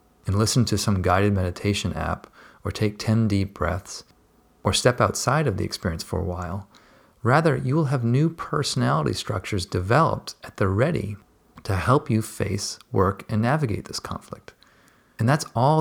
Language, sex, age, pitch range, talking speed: English, male, 40-59, 95-115 Hz, 165 wpm